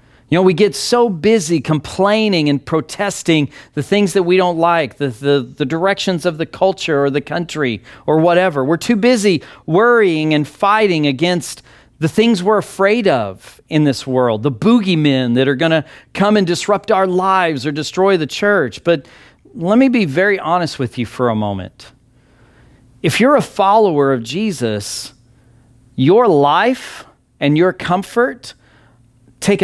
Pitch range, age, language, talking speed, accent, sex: 130-200 Hz, 40-59, English, 160 wpm, American, male